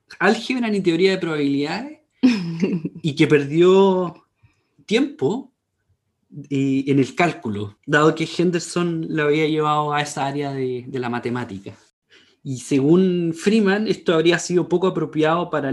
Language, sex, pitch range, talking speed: Spanish, male, 130-190 Hz, 135 wpm